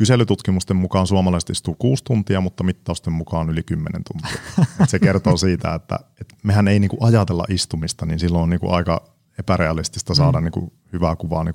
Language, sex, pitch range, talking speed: Finnish, male, 90-115 Hz, 145 wpm